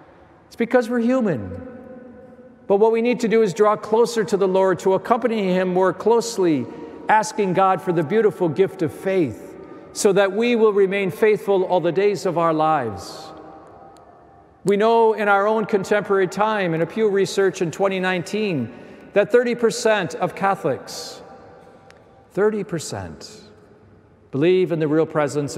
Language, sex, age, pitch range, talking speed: English, male, 50-69, 155-210 Hz, 150 wpm